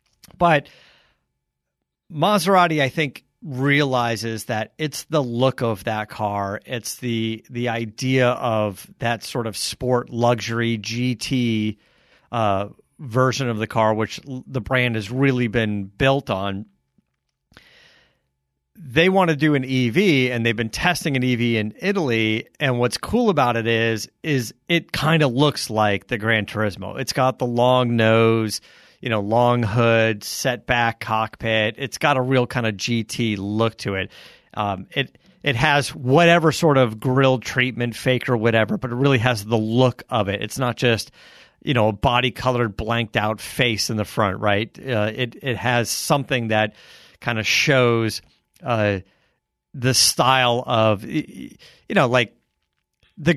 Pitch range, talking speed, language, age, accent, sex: 110-130 Hz, 155 wpm, English, 40-59, American, male